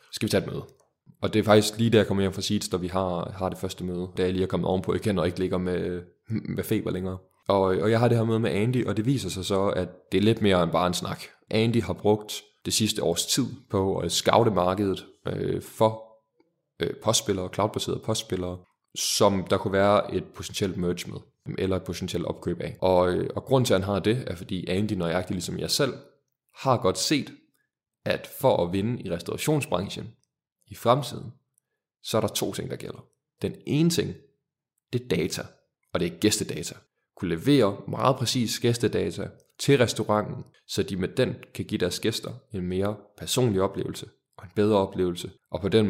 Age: 20-39